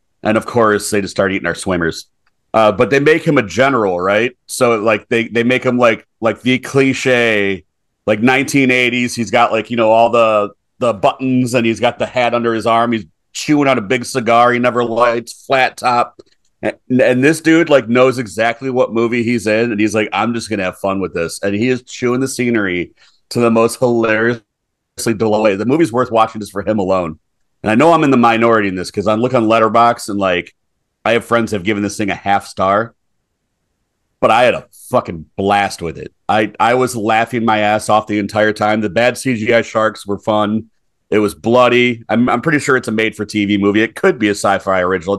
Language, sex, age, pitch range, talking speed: English, male, 40-59, 105-125 Hz, 220 wpm